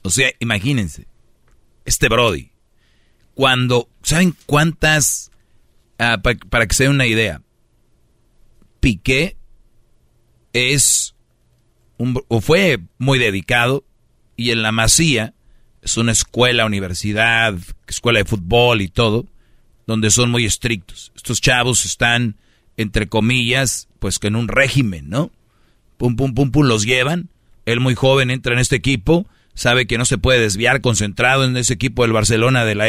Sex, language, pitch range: male, Spanish, 110-130 Hz